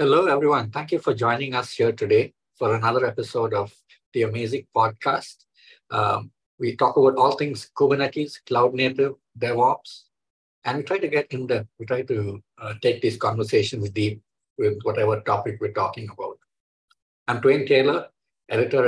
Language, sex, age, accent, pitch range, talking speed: English, male, 50-69, Indian, 110-150 Hz, 160 wpm